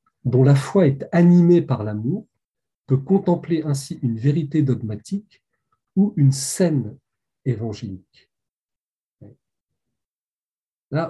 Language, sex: French, male